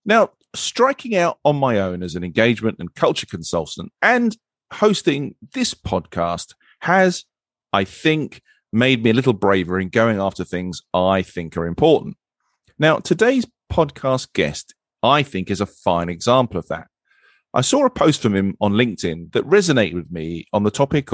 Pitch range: 95-140 Hz